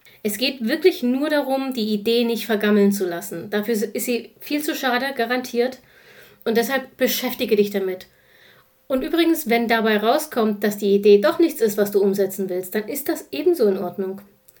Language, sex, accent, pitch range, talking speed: German, female, German, 215-260 Hz, 180 wpm